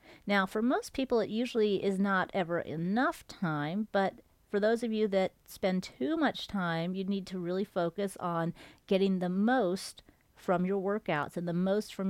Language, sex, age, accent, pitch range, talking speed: English, female, 40-59, American, 180-230 Hz, 185 wpm